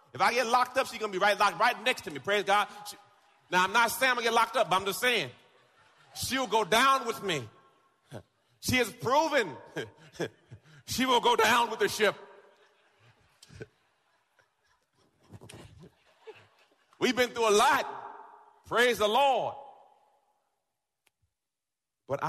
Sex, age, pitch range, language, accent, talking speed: male, 40-59, 150-240 Hz, English, American, 145 wpm